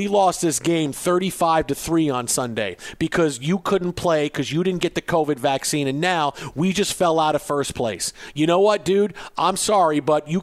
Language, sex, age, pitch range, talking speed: English, male, 50-69, 165-210 Hz, 215 wpm